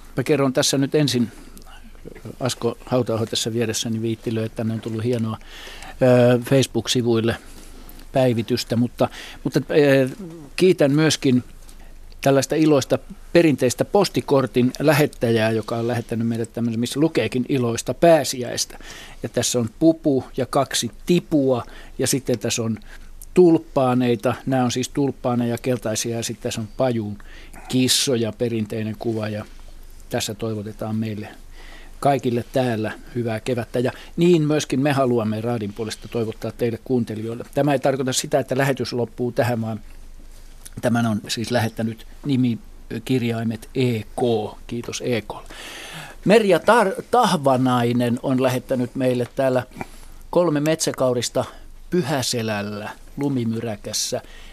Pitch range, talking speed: 115-135 Hz, 115 wpm